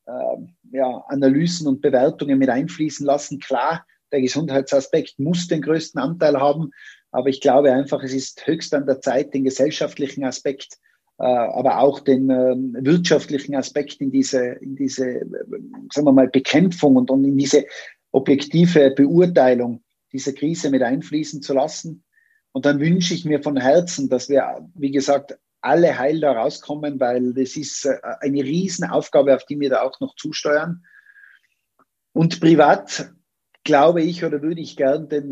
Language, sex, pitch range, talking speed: German, male, 135-155 Hz, 160 wpm